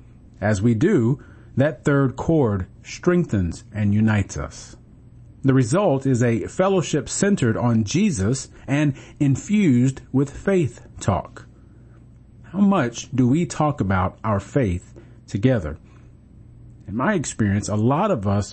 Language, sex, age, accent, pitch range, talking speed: English, male, 40-59, American, 105-135 Hz, 125 wpm